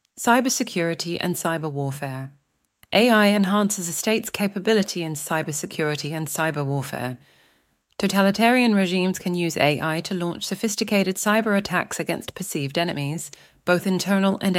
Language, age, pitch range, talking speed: English, 40-59, 150-200 Hz, 125 wpm